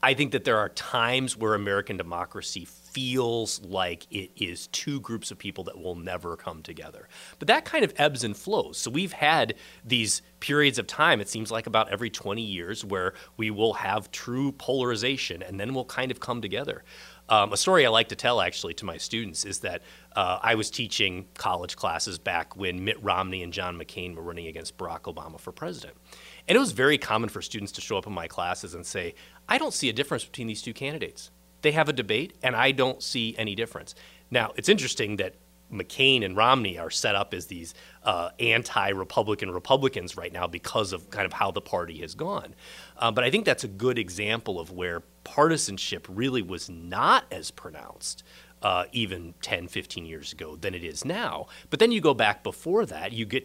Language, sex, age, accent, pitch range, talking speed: English, male, 30-49, American, 90-125 Hz, 205 wpm